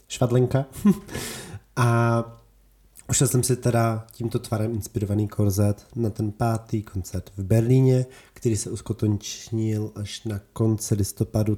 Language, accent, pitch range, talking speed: Czech, native, 105-130 Hz, 120 wpm